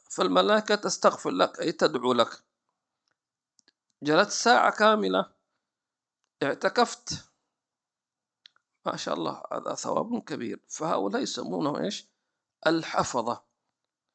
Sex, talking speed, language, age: male, 80 wpm, English, 50-69